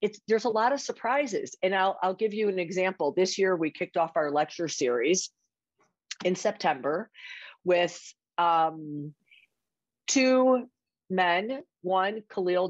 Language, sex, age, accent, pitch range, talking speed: English, female, 50-69, American, 155-195 Hz, 135 wpm